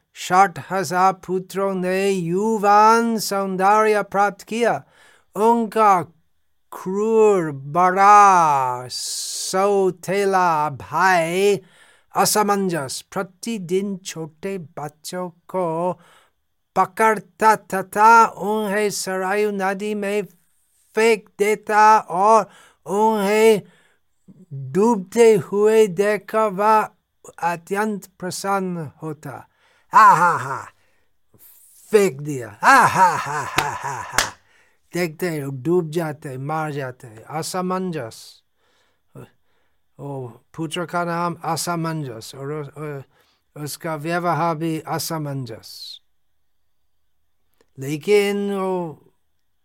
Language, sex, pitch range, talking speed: Hindi, male, 155-205 Hz, 70 wpm